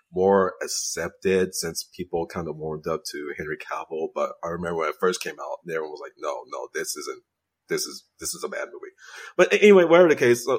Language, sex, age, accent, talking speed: English, male, 30-49, American, 220 wpm